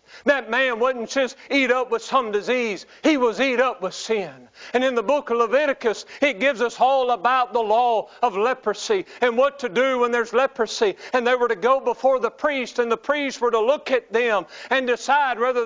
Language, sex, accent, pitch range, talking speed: English, male, American, 230-270 Hz, 215 wpm